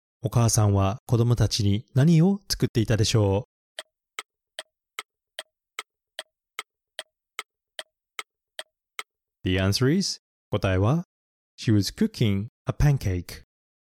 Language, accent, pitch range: Japanese, native, 100-155 Hz